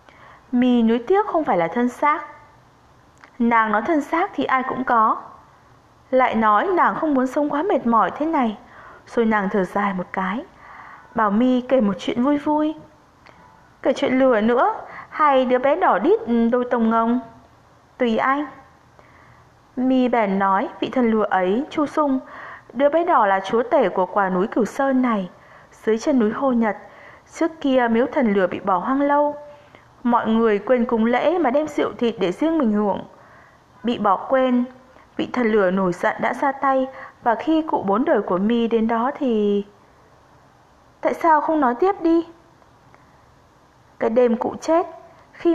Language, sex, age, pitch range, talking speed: Vietnamese, female, 20-39, 215-290 Hz, 175 wpm